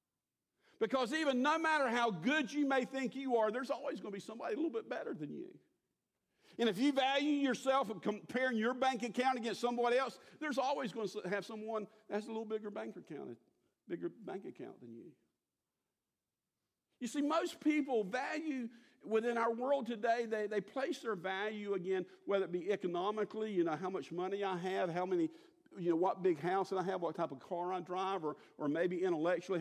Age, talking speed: 50-69, 205 wpm